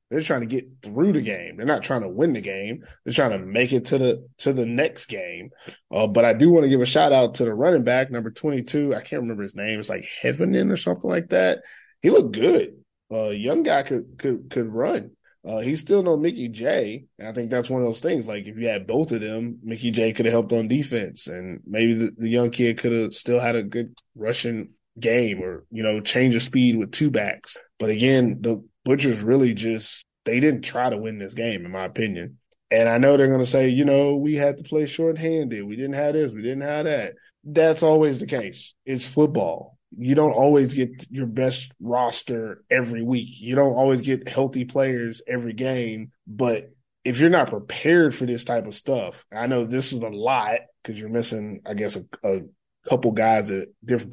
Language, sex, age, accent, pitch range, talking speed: English, male, 20-39, American, 115-135 Hz, 225 wpm